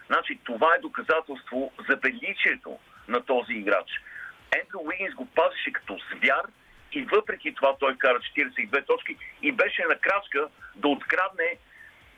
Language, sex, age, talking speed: Bulgarian, male, 50-69, 140 wpm